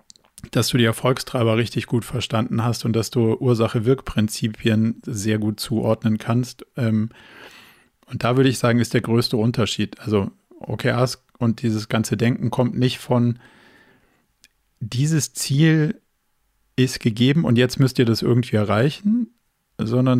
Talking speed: 140 wpm